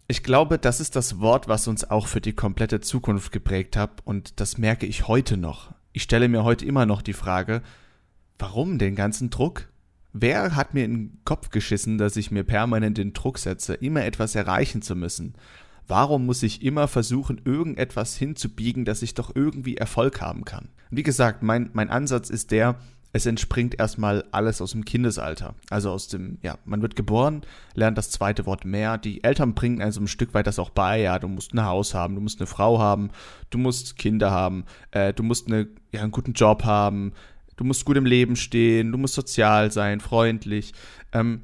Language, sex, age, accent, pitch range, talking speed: German, male, 30-49, German, 105-125 Hz, 205 wpm